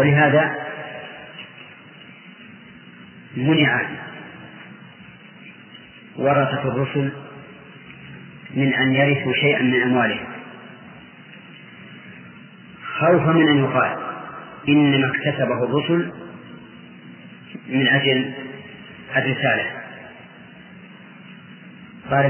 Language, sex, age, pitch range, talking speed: English, male, 40-59, 135-155 Hz, 55 wpm